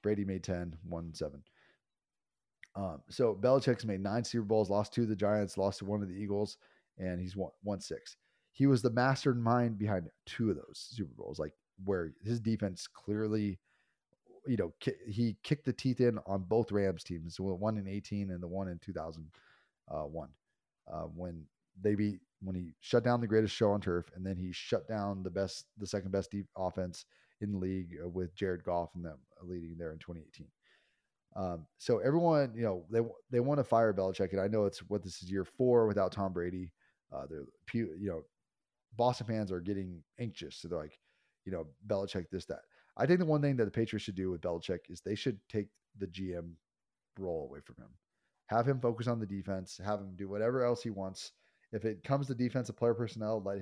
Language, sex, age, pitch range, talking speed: English, male, 30-49, 95-115 Hz, 205 wpm